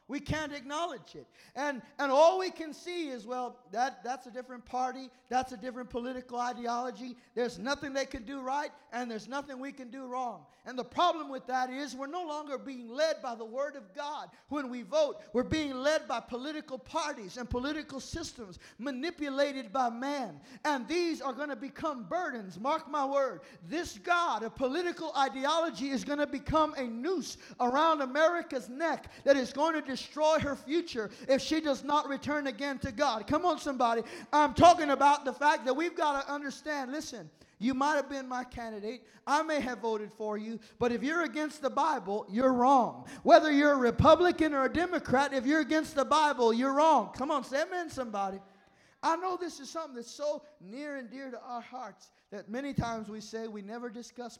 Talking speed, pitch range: 195 wpm, 245-300 Hz